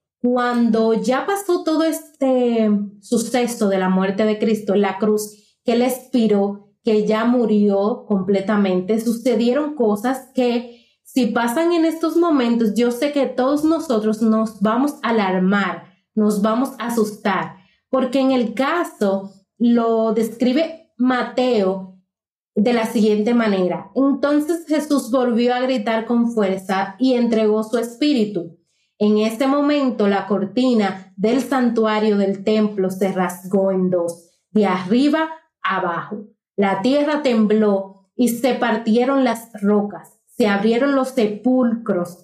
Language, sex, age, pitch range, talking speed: Spanish, female, 30-49, 205-255 Hz, 130 wpm